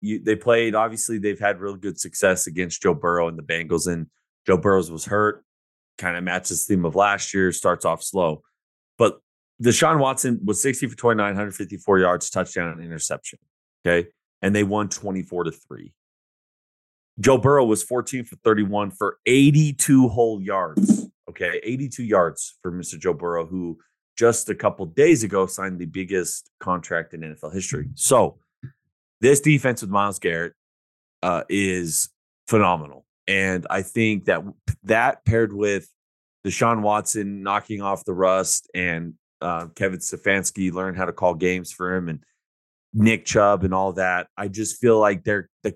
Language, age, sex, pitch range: English, 30-49, male, 90-110 Hz